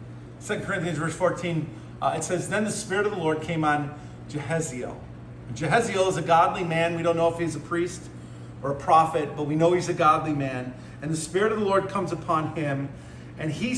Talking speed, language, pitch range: 215 wpm, English, 150-200 Hz